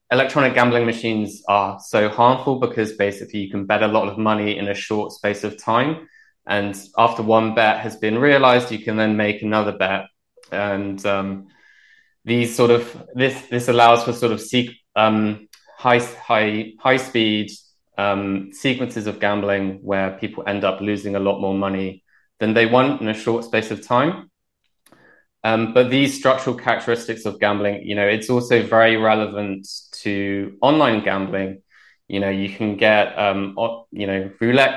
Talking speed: 170 wpm